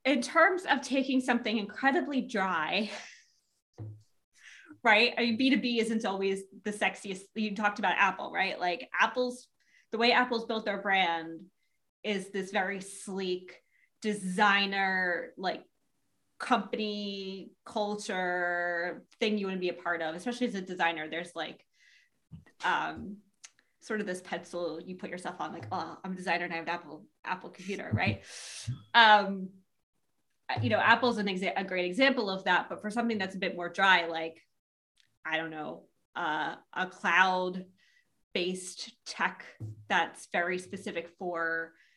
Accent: American